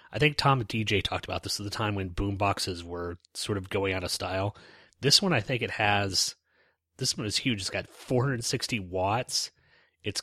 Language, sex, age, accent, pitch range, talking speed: English, male, 30-49, American, 95-105 Hz, 205 wpm